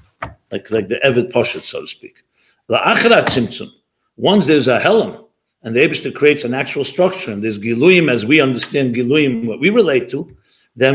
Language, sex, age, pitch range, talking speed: English, male, 50-69, 135-200 Hz, 175 wpm